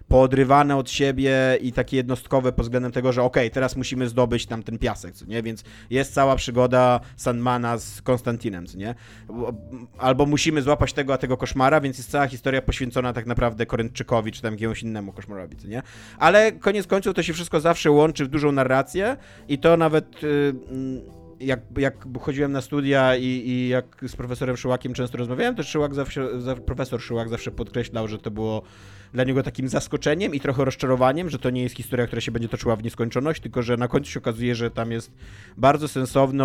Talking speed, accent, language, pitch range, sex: 195 wpm, native, Polish, 115-140 Hz, male